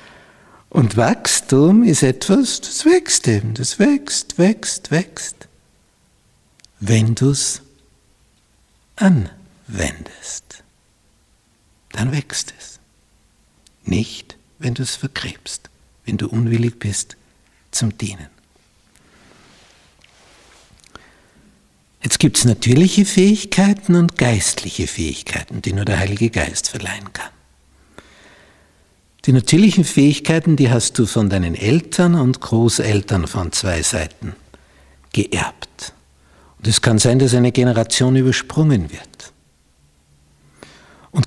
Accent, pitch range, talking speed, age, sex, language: Austrian, 95-140 Hz, 100 wpm, 60-79, male, German